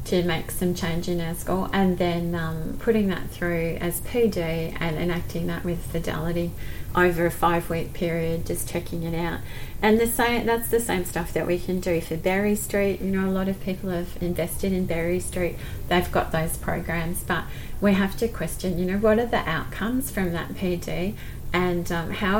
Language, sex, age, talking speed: English, female, 30-49, 200 wpm